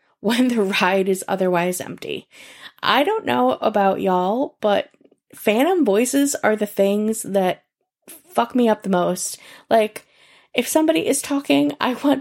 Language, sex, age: English, female, 10-29